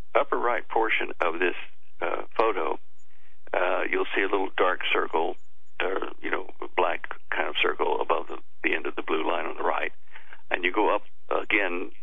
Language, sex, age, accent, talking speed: English, male, 60-79, American, 190 wpm